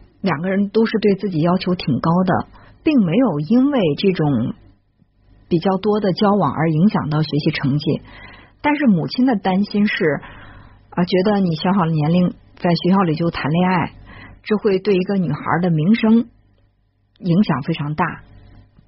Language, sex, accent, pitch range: Chinese, female, native, 140-190 Hz